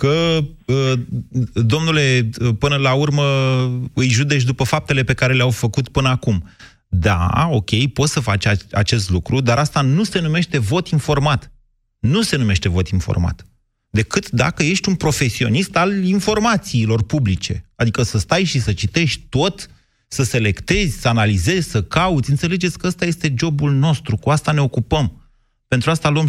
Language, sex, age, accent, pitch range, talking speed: Romanian, male, 30-49, native, 120-160 Hz, 155 wpm